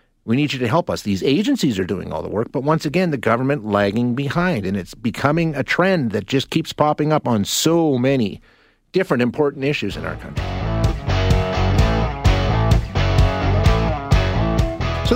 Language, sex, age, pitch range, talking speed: English, male, 40-59, 100-135 Hz, 160 wpm